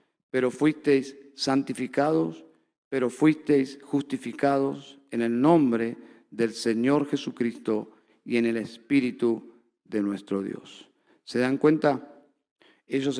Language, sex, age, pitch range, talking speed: Spanish, male, 50-69, 130-160 Hz, 105 wpm